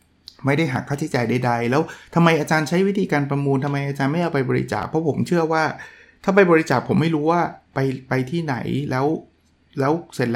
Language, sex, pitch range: Thai, male, 125-155 Hz